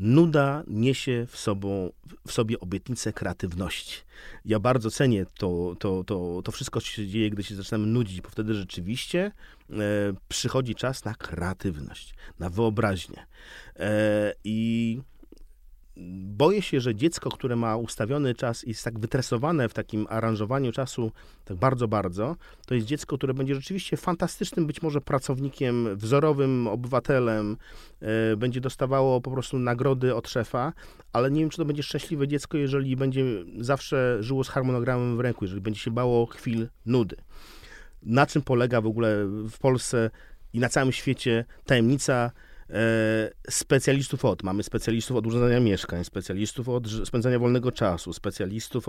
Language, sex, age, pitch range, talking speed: Polish, male, 40-59, 105-130 Hz, 150 wpm